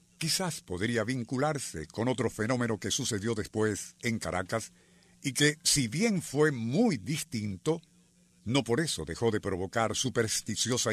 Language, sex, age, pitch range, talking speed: Spanish, male, 50-69, 110-155 Hz, 135 wpm